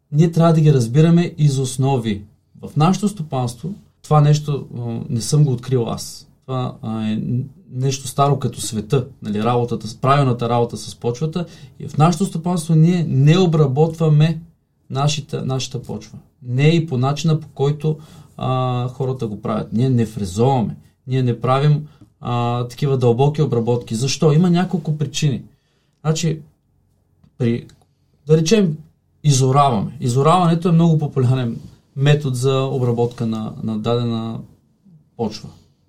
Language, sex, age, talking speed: Bulgarian, male, 30-49, 130 wpm